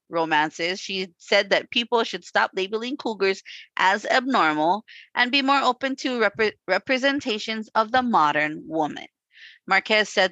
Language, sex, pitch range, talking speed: English, female, 175-240 Hz, 135 wpm